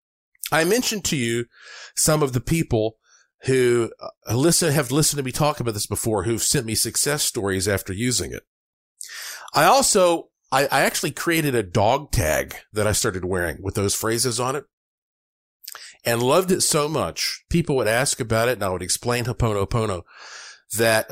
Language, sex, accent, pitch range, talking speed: English, male, American, 100-130 Hz, 180 wpm